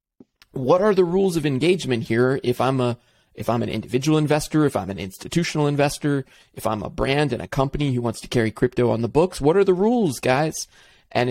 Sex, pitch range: male, 115-140 Hz